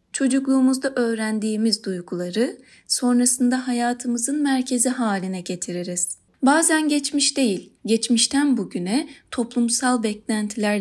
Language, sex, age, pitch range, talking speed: Turkish, female, 30-49, 205-270 Hz, 85 wpm